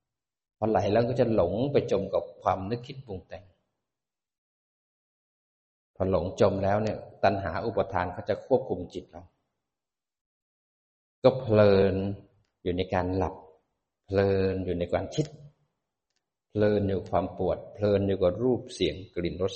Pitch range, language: 95-125 Hz, Thai